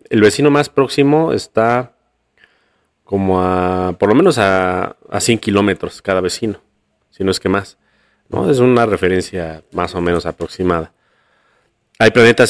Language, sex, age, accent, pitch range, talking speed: Spanish, male, 30-49, Mexican, 95-120 Hz, 150 wpm